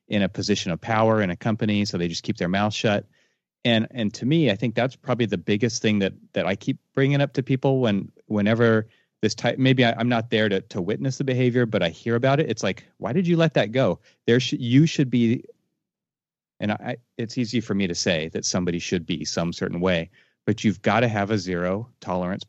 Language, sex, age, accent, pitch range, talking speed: English, male, 30-49, American, 100-130 Hz, 235 wpm